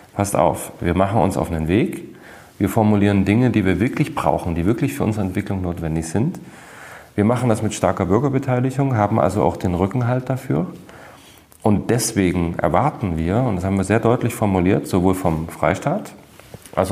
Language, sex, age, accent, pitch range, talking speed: German, male, 40-59, German, 90-115 Hz, 175 wpm